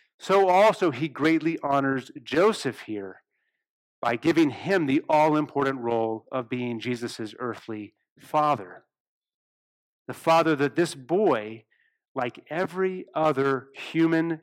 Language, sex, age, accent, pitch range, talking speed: English, male, 40-59, American, 125-165 Hz, 110 wpm